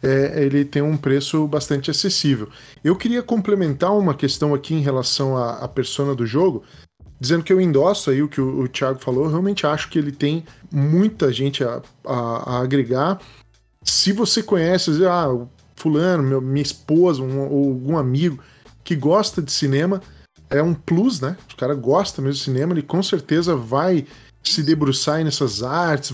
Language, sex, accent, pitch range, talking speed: Portuguese, male, Brazilian, 130-175 Hz, 175 wpm